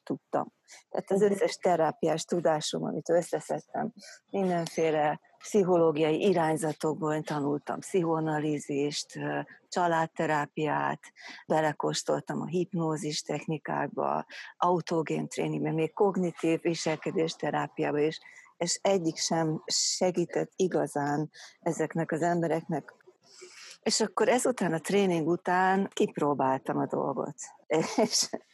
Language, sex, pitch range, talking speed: Hungarian, female, 150-175 Hz, 90 wpm